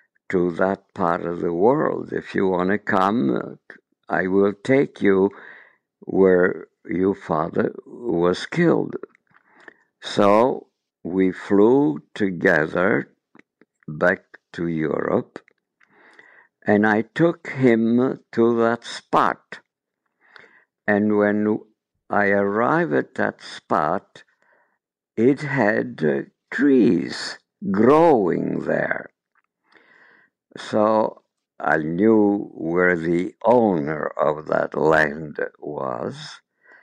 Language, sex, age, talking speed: English, male, 60-79, 95 wpm